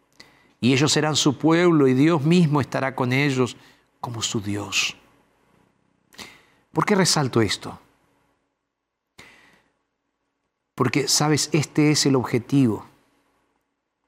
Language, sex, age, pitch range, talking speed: Spanish, male, 50-69, 120-150 Hz, 100 wpm